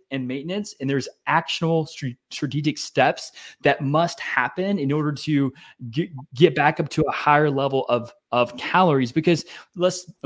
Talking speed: 145 wpm